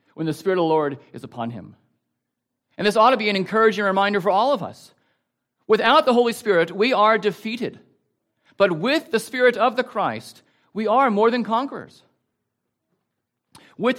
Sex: male